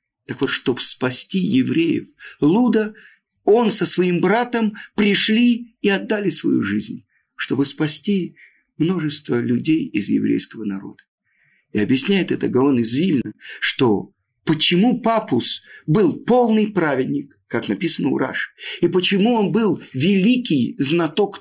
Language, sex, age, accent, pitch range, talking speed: Russian, male, 50-69, native, 150-230 Hz, 120 wpm